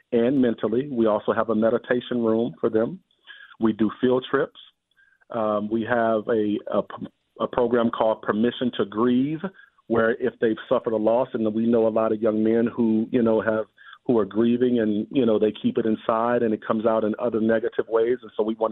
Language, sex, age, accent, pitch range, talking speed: English, male, 40-59, American, 110-120 Hz, 210 wpm